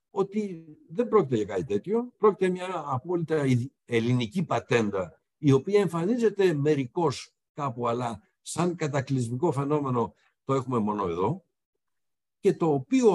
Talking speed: 125 wpm